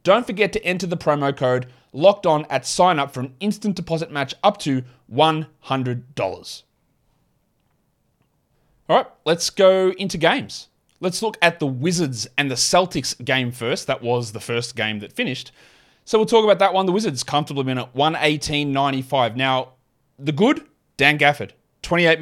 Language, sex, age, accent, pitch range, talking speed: English, male, 30-49, Australian, 125-165 Hz, 160 wpm